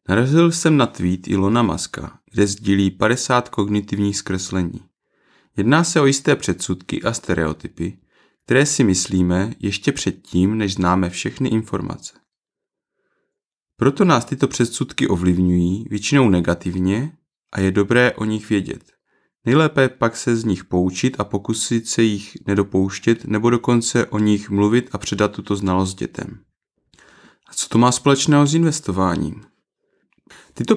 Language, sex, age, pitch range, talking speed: Czech, male, 30-49, 95-120 Hz, 135 wpm